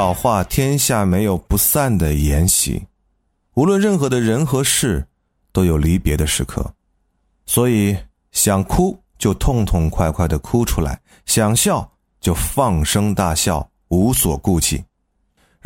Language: Chinese